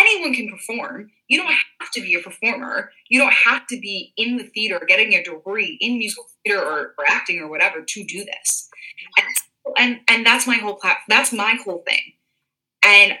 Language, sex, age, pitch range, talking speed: English, female, 20-39, 195-275 Hz, 200 wpm